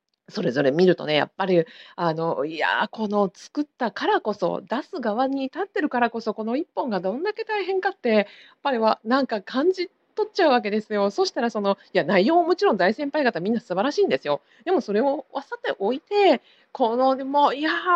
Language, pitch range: Japanese, 200-310 Hz